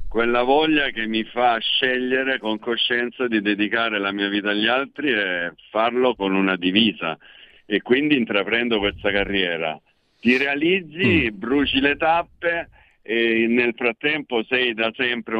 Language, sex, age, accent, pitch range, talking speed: Italian, male, 50-69, native, 95-125 Hz, 140 wpm